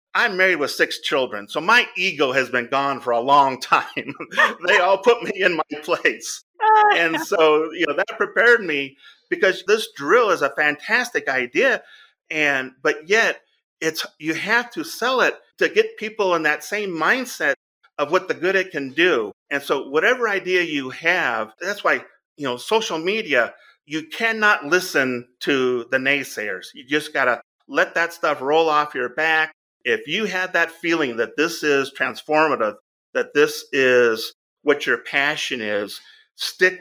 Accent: American